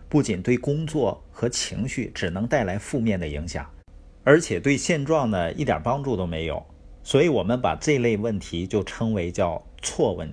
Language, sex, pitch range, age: Chinese, male, 80-125 Hz, 50-69